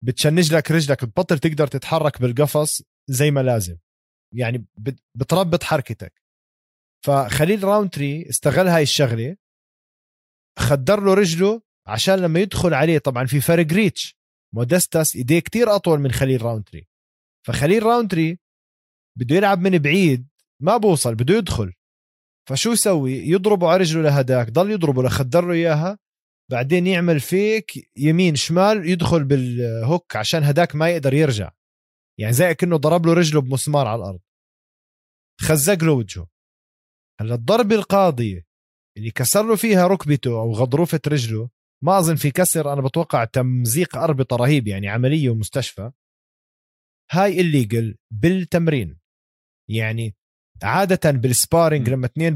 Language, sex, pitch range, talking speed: Arabic, male, 120-175 Hz, 130 wpm